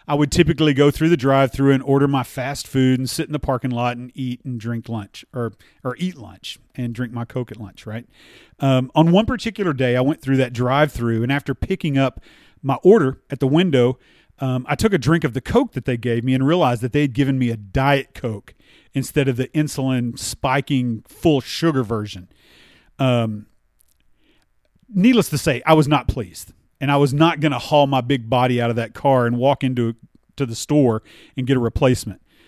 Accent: American